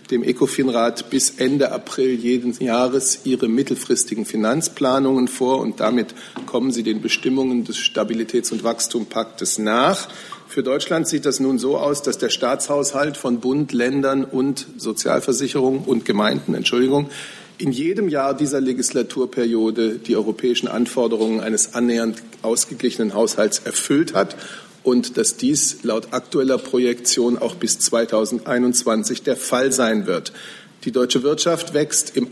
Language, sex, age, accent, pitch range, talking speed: German, male, 40-59, German, 120-135 Hz, 135 wpm